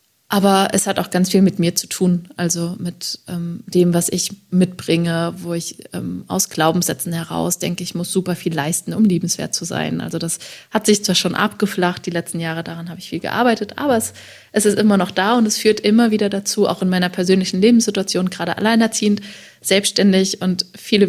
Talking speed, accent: 200 wpm, German